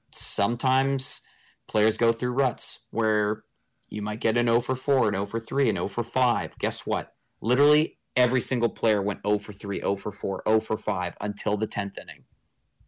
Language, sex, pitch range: English, male, 110-130 Hz